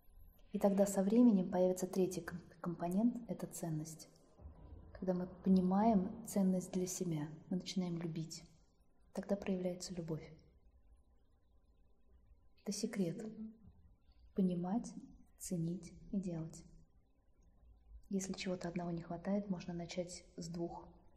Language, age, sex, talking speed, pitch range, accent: Russian, 20-39, female, 100 wpm, 155-200 Hz, native